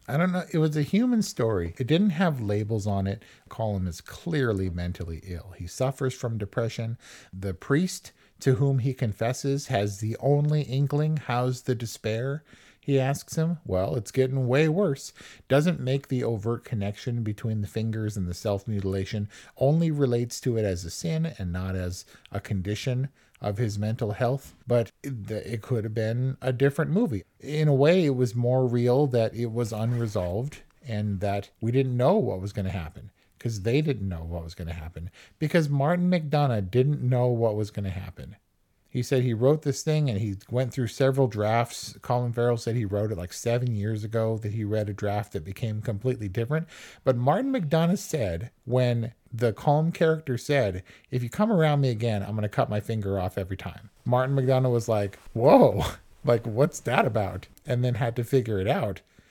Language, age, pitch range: English, 40-59, 105-135 Hz